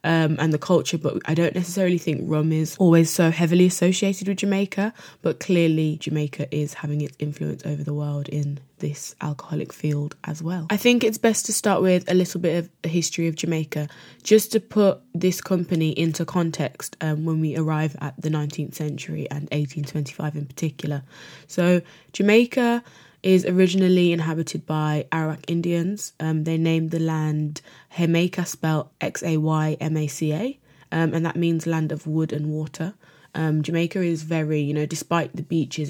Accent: British